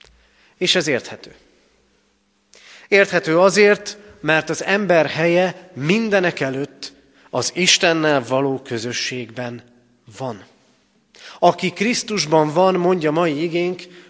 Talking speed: 95 wpm